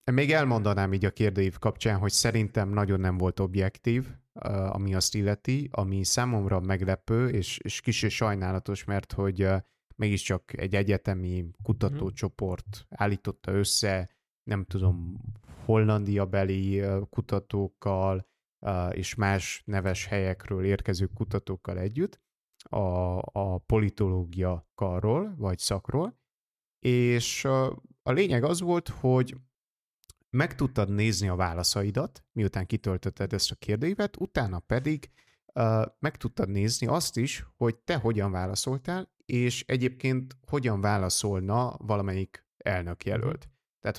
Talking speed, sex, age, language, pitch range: 115 wpm, male, 30-49, Hungarian, 95-120 Hz